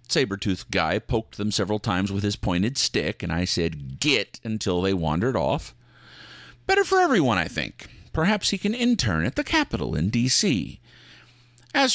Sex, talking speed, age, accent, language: male, 165 wpm, 50-69, American, English